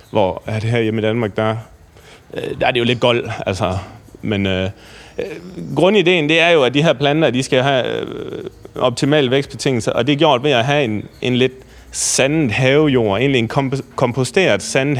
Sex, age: male, 30-49